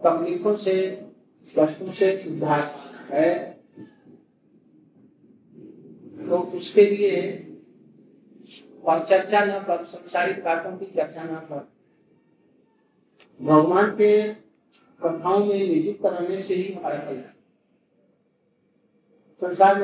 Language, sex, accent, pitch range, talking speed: Hindi, male, native, 170-195 Hz, 35 wpm